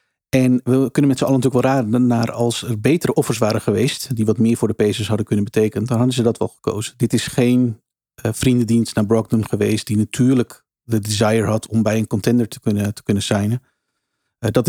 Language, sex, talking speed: Dutch, male, 225 wpm